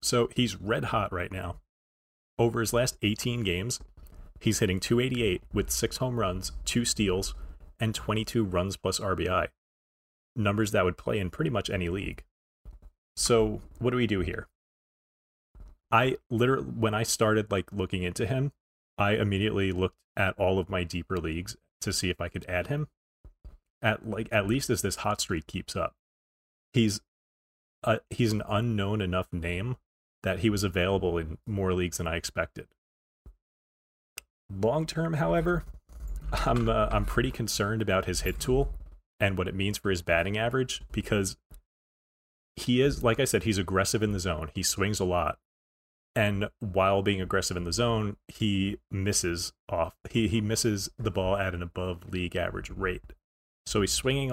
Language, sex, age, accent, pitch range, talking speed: English, male, 30-49, American, 80-110 Hz, 165 wpm